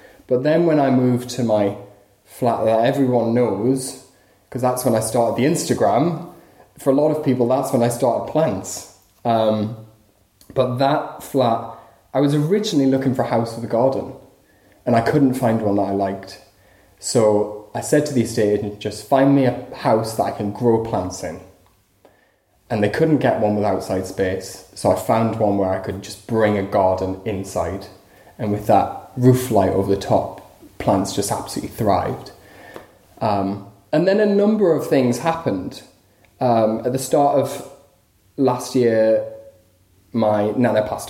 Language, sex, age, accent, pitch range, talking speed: English, male, 20-39, British, 100-135 Hz, 170 wpm